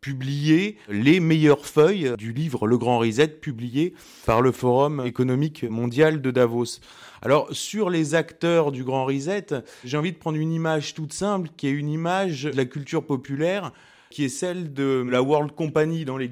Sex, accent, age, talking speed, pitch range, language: male, French, 30-49, 180 wpm, 120-150 Hz, French